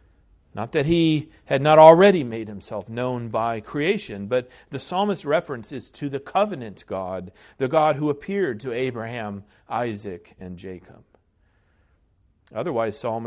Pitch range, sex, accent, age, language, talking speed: 95-130 Hz, male, American, 50-69, English, 135 wpm